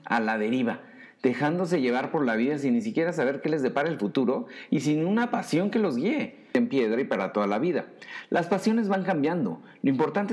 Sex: male